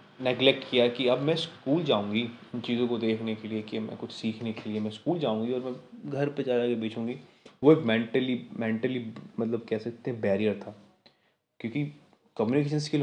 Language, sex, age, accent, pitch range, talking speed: Hindi, male, 20-39, native, 115-145 Hz, 195 wpm